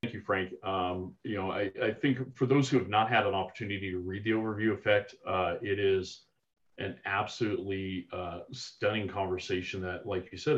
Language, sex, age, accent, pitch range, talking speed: English, male, 30-49, American, 95-115 Hz, 195 wpm